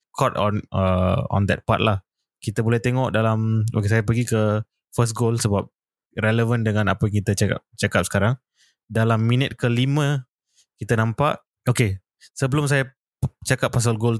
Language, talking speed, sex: Malay, 155 wpm, male